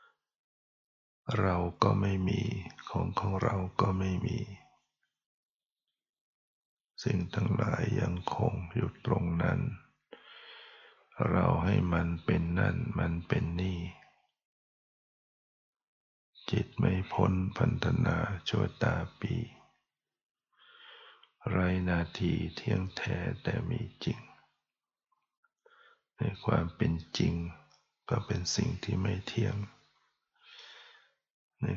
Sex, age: male, 60-79